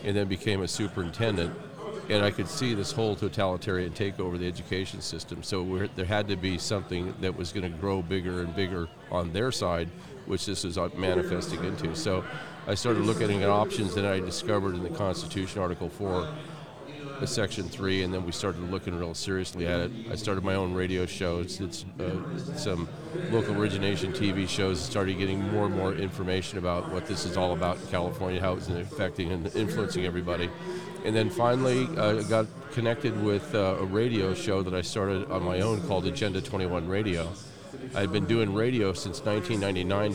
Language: English